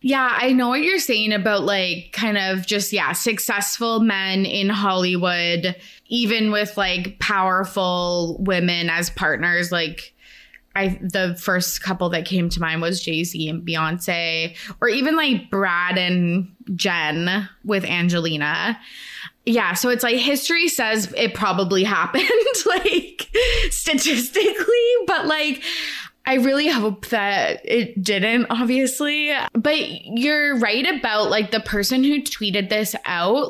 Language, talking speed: English, 135 wpm